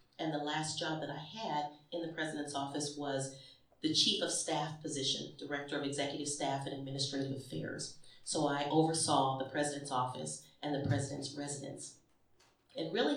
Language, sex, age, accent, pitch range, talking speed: English, female, 40-59, American, 140-170 Hz, 165 wpm